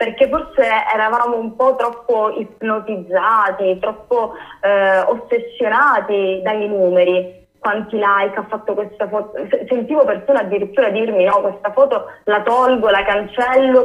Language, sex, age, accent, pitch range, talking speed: Italian, female, 20-39, native, 190-225 Hz, 125 wpm